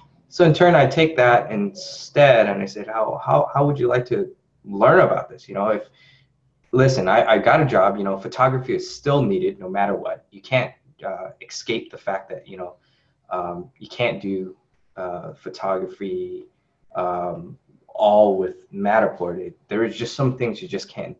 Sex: male